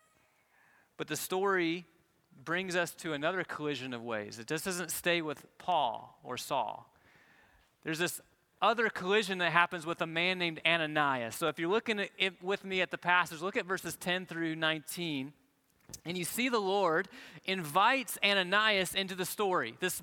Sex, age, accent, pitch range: male, 30-49, American, 165-210 Hz